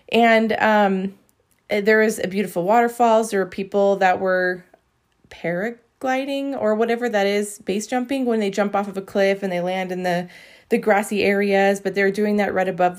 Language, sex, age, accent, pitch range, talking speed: English, female, 20-39, American, 185-225 Hz, 185 wpm